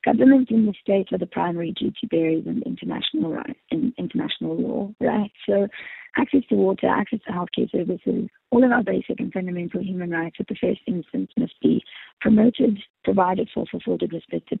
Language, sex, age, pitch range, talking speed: English, female, 30-49, 180-230 Hz, 175 wpm